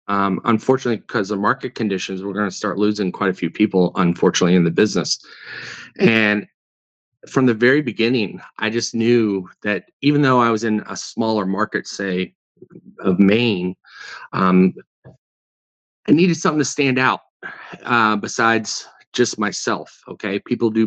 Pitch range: 95-115 Hz